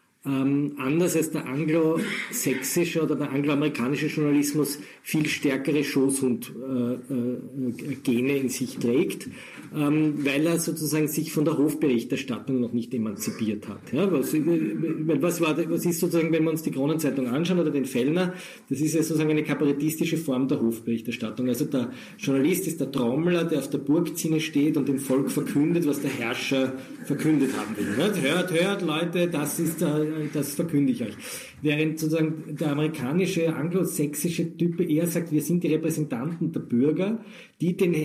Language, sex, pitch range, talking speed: German, male, 135-165 Hz, 155 wpm